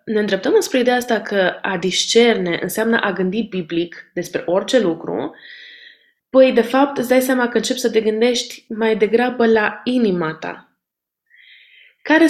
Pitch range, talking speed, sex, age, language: 185-250 Hz, 150 wpm, female, 20-39, Romanian